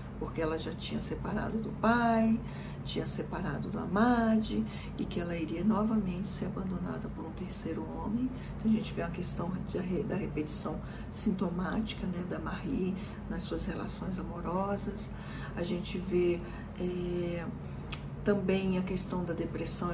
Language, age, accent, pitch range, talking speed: Portuguese, 50-69, Brazilian, 165-195 Hz, 140 wpm